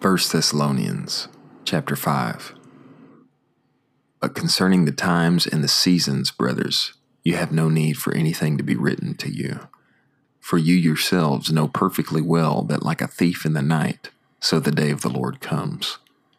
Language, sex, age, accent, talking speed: English, male, 40-59, American, 155 wpm